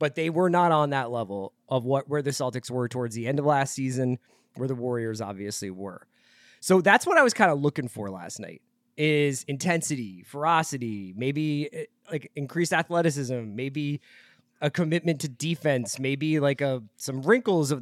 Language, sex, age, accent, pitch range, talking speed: English, male, 20-39, American, 120-160 Hz, 180 wpm